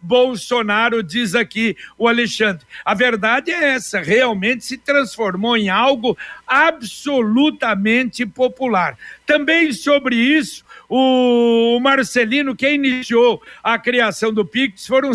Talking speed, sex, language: 110 wpm, male, Portuguese